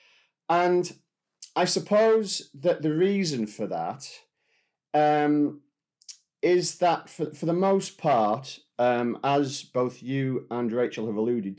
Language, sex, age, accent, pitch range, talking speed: English, male, 40-59, British, 110-155 Hz, 125 wpm